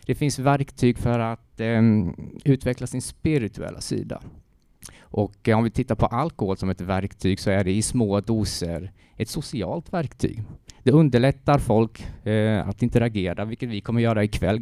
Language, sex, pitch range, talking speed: Swedish, male, 100-135 Hz, 165 wpm